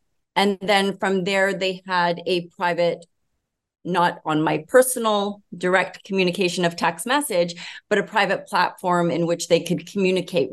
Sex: female